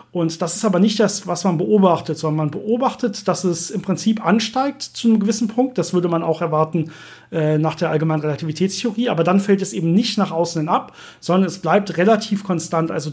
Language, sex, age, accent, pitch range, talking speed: German, male, 40-59, German, 170-215 Hz, 215 wpm